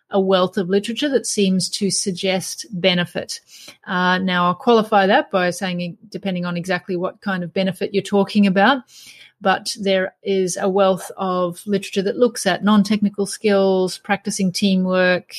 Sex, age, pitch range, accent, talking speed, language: female, 30-49, 180-215 Hz, Australian, 155 wpm, English